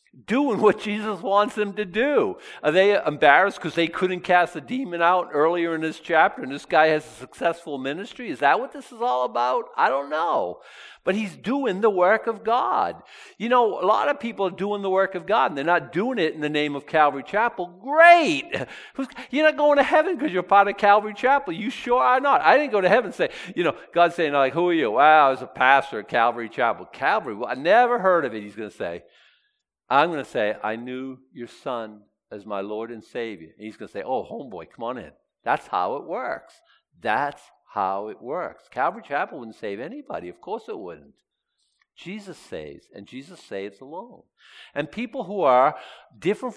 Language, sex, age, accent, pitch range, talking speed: English, male, 50-69, American, 150-245 Hz, 220 wpm